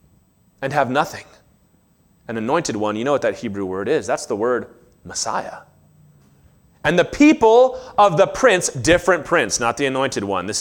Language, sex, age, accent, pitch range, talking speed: English, male, 30-49, American, 140-235 Hz, 170 wpm